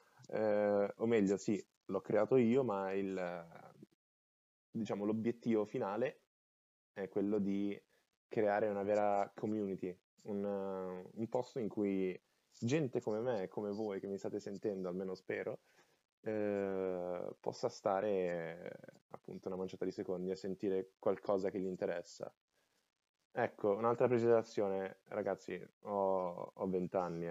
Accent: native